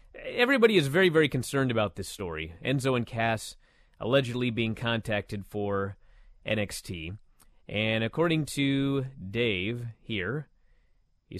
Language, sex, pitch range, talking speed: English, male, 105-145 Hz, 115 wpm